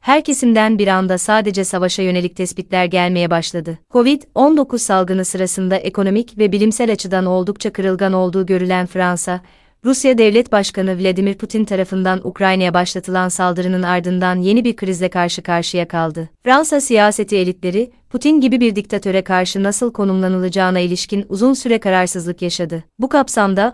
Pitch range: 185-220 Hz